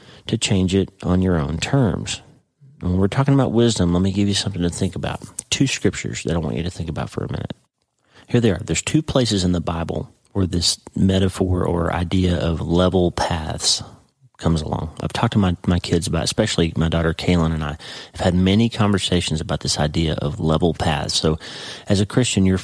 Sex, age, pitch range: male, 40-59, 85-105 Hz